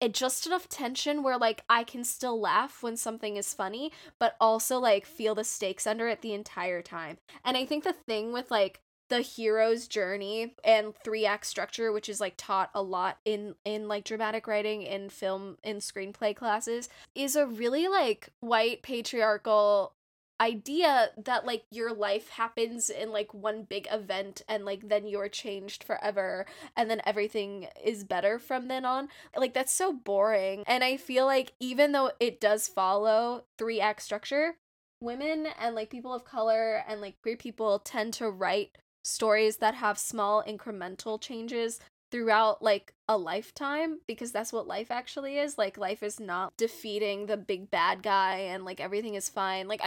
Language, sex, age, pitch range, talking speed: English, female, 10-29, 205-245 Hz, 175 wpm